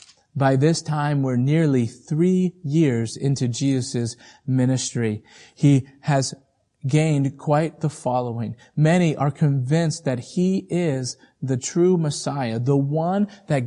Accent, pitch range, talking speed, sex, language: American, 120-155 Hz, 125 wpm, male, English